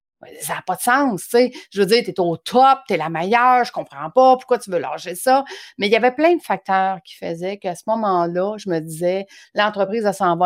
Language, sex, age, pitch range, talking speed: French, female, 40-59, 175-230 Hz, 260 wpm